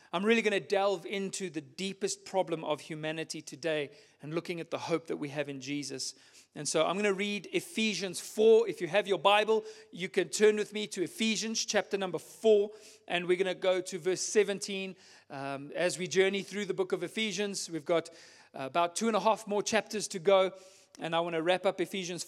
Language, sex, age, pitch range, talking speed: English, male, 40-59, 165-215 Hz, 215 wpm